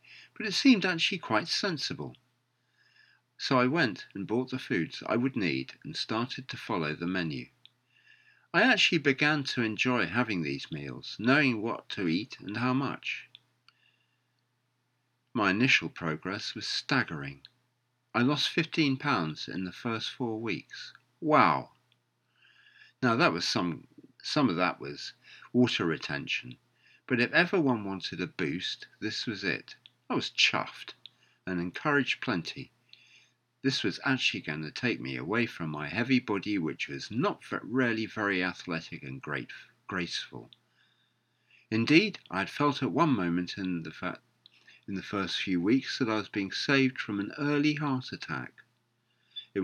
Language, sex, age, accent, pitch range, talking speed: English, male, 50-69, British, 85-130 Hz, 145 wpm